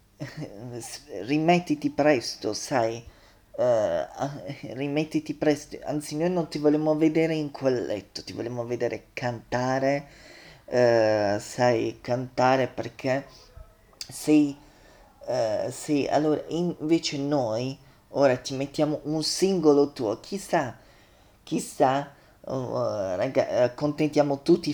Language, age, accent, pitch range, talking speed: Italian, 30-49, native, 125-155 Hz, 105 wpm